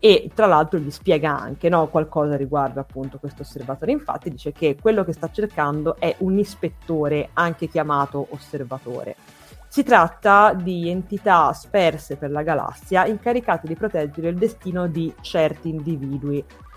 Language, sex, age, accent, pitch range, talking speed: Italian, female, 20-39, native, 150-190 Hz, 145 wpm